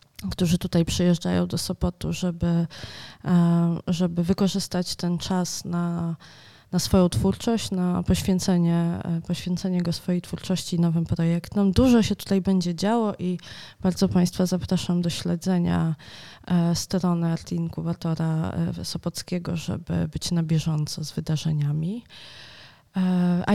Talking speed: 110 wpm